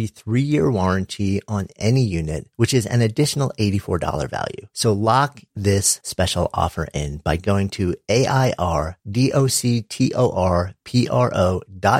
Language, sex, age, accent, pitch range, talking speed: English, male, 40-59, American, 100-130 Hz, 105 wpm